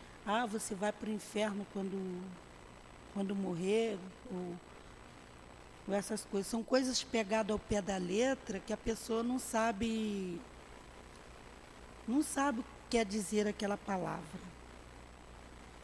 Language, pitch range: Portuguese, 165-235 Hz